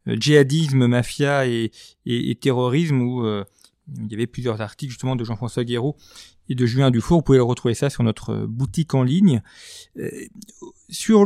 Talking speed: 170 wpm